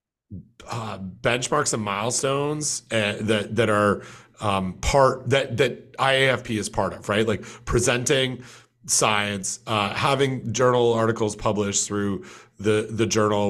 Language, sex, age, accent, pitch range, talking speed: English, male, 30-49, American, 105-125 Hz, 130 wpm